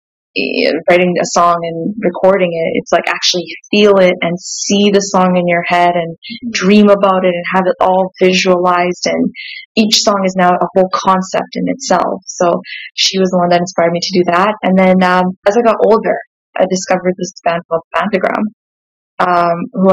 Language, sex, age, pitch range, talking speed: English, female, 20-39, 180-210 Hz, 190 wpm